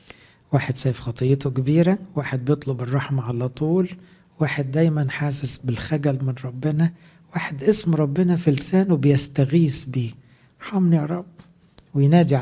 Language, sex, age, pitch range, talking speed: English, male, 60-79, 125-160 Hz, 120 wpm